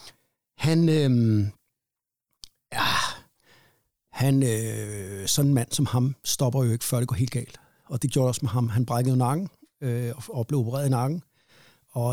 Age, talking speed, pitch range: 60-79, 170 wpm, 120-140 Hz